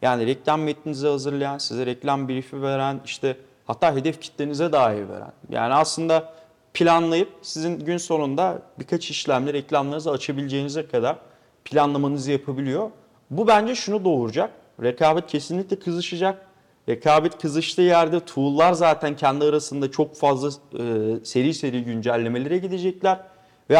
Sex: male